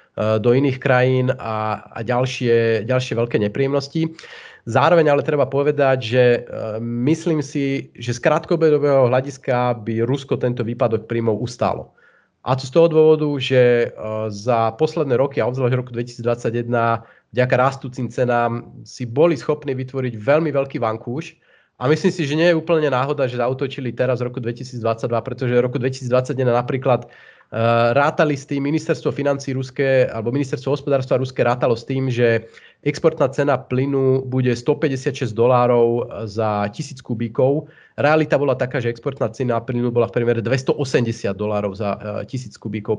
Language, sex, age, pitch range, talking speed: Slovak, male, 30-49, 120-145 Hz, 150 wpm